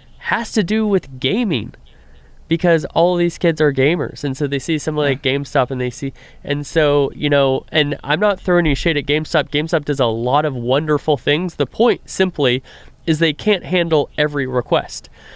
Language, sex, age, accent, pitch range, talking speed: English, male, 20-39, American, 125-150 Hz, 195 wpm